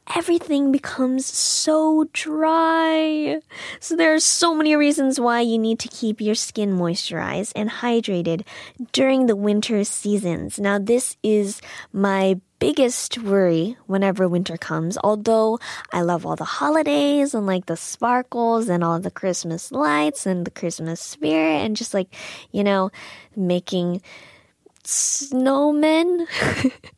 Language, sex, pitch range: Korean, female, 170-245 Hz